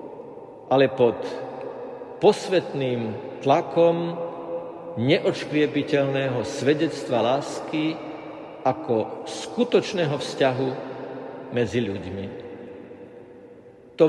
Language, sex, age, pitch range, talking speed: Slovak, male, 50-69, 115-145 Hz, 55 wpm